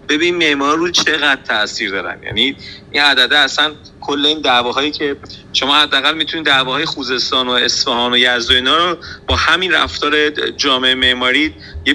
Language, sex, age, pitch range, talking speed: Persian, male, 40-59, 120-175 Hz, 145 wpm